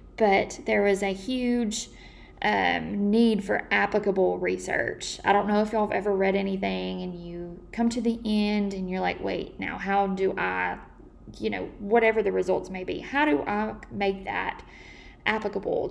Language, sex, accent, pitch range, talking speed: English, female, American, 185-215 Hz, 175 wpm